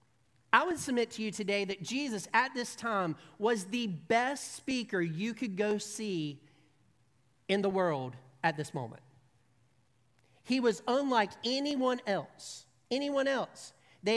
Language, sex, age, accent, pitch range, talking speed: English, male, 40-59, American, 150-230 Hz, 140 wpm